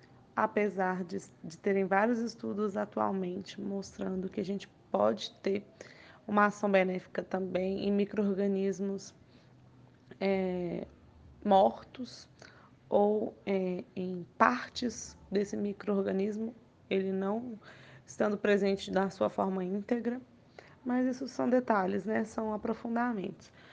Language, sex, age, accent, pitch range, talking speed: Portuguese, female, 20-39, Brazilian, 190-230 Hz, 100 wpm